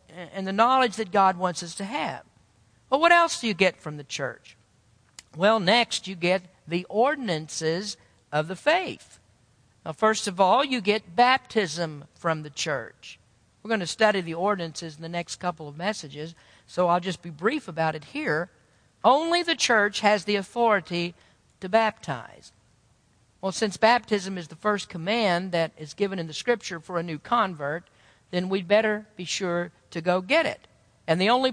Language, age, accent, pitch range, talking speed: English, 50-69, American, 170-225 Hz, 180 wpm